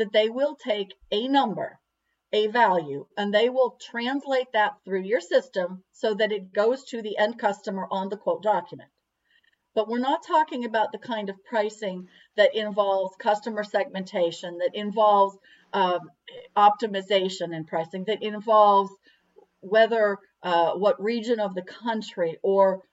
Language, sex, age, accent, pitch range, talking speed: English, female, 50-69, American, 190-230 Hz, 150 wpm